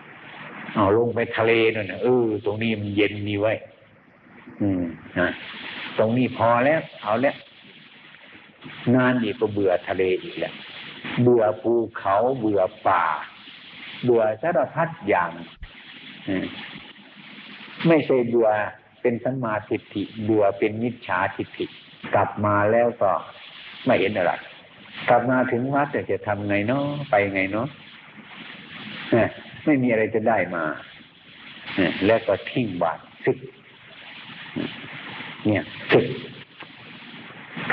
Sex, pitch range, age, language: male, 105-130 Hz, 60-79, Thai